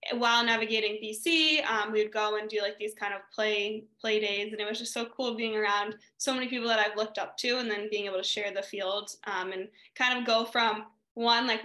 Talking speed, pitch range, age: 245 wpm, 210-235 Hz, 10-29